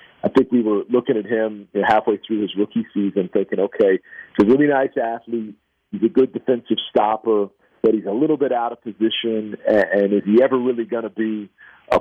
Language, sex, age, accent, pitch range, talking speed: English, male, 40-59, American, 95-115 Hz, 205 wpm